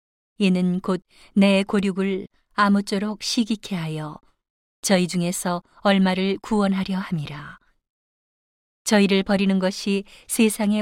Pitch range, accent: 180-205 Hz, native